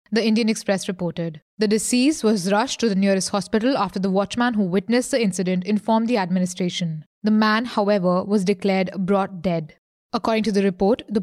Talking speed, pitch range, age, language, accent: 180 wpm, 190-230 Hz, 20-39, English, Indian